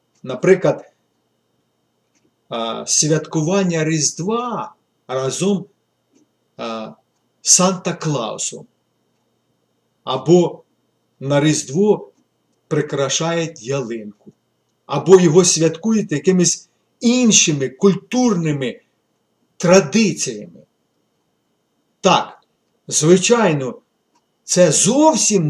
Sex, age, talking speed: male, 50-69, 50 wpm